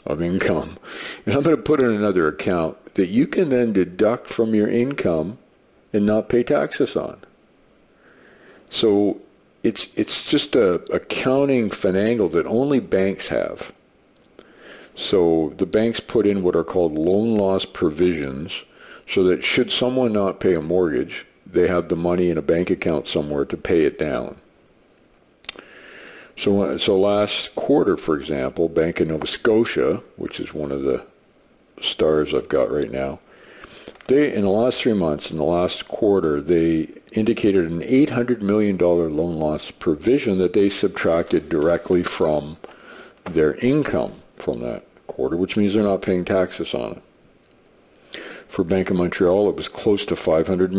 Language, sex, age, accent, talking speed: English, male, 50-69, American, 155 wpm